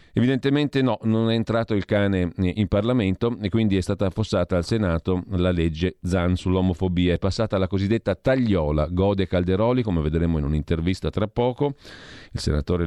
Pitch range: 85-105 Hz